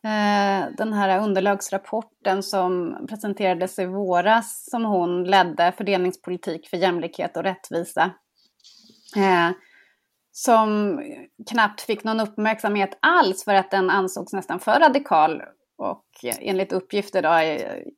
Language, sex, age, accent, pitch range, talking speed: Swedish, female, 30-49, native, 180-220 Hz, 115 wpm